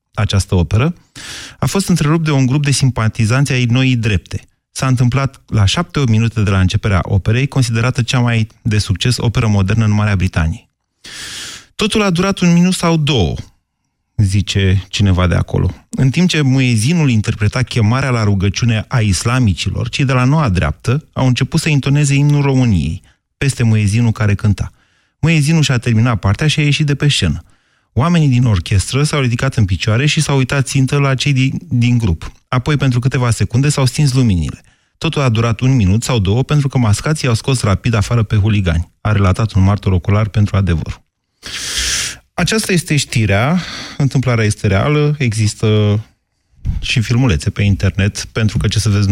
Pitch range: 100-135 Hz